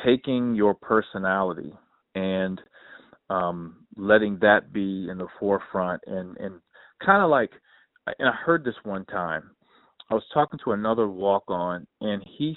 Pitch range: 95-115 Hz